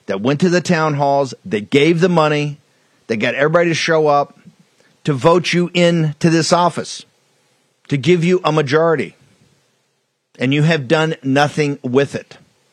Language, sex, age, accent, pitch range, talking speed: English, male, 50-69, American, 145-180 Hz, 160 wpm